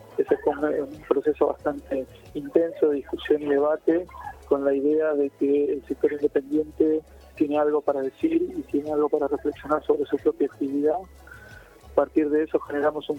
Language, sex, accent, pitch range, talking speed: Spanish, male, Argentinian, 145-170 Hz, 170 wpm